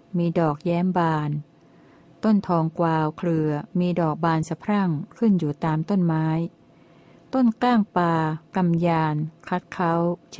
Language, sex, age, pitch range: Thai, female, 60-79, 160-185 Hz